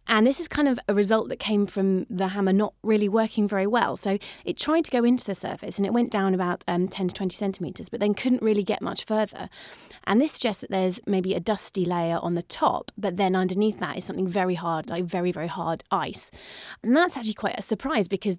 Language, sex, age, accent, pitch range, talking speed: English, female, 30-49, British, 180-215 Hz, 240 wpm